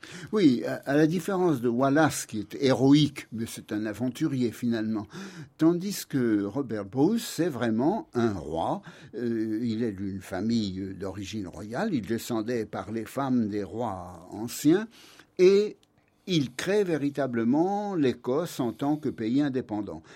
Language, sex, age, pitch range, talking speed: French, male, 60-79, 115-155 Hz, 140 wpm